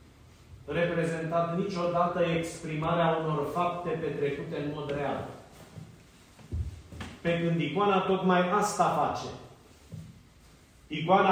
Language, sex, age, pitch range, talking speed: Romanian, male, 40-59, 135-185 Hz, 85 wpm